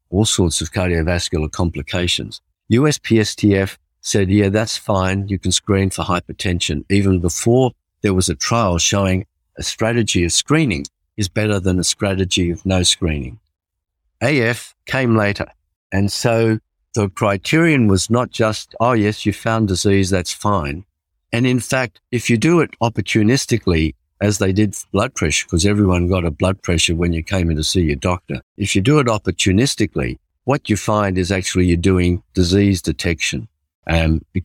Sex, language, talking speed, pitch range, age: male, English, 165 wpm, 85-105 Hz, 50-69